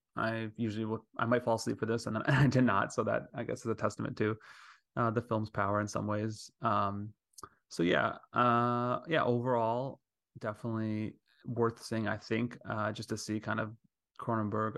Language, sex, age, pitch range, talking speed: English, male, 20-39, 105-120 Hz, 190 wpm